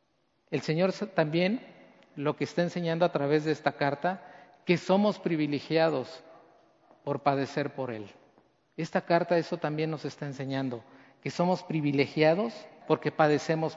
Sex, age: male, 50-69